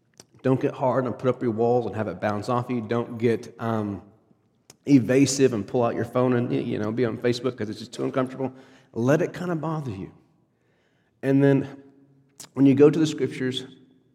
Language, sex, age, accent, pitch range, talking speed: English, male, 40-59, American, 115-135 Hz, 205 wpm